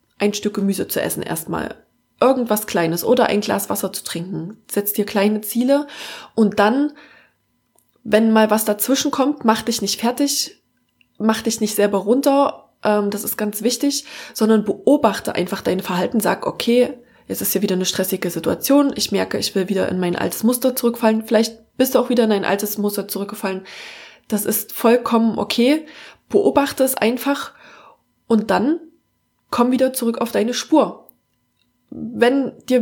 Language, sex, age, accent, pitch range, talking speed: German, female, 20-39, German, 205-250 Hz, 165 wpm